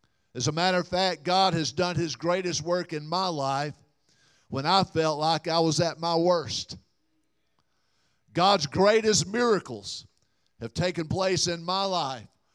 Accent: American